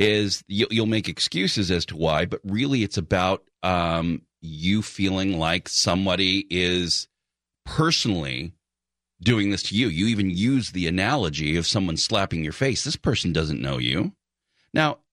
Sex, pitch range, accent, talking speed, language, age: male, 85-115 Hz, American, 150 wpm, English, 40-59